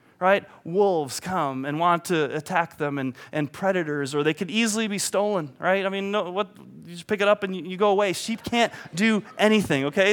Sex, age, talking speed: male, 30-49, 220 wpm